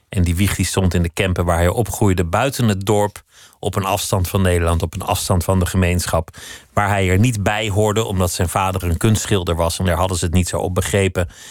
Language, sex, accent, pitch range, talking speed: Dutch, male, Dutch, 85-100 Hz, 240 wpm